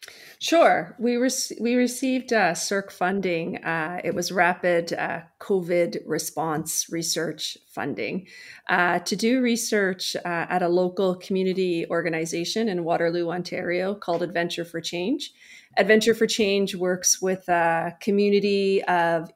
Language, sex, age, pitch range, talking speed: English, female, 30-49, 175-205 Hz, 125 wpm